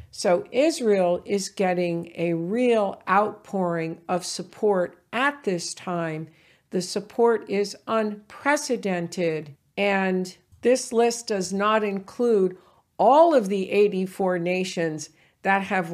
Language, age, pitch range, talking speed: English, 50-69, 175-215 Hz, 110 wpm